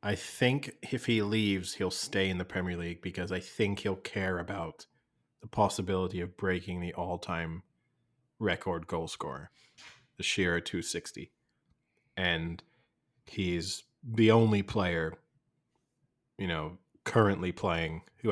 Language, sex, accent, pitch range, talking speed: English, male, American, 85-105 Hz, 130 wpm